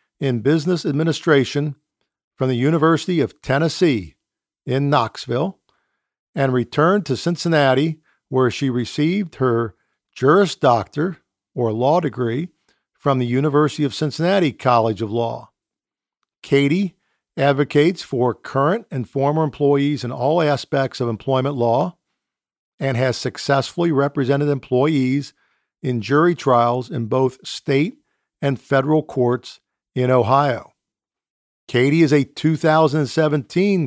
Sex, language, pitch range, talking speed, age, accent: male, English, 125-155 Hz, 115 wpm, 50-69, American